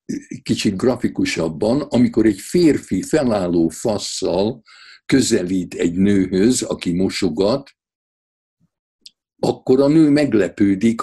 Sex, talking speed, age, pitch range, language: male, 85 wpm, 60-79, 90-150 Hz, Hungarian